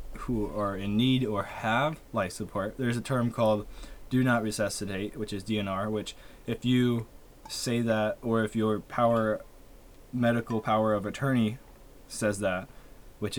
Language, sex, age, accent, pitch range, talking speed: English, male, 20-39, American, 105-120 Hz, 150 wpm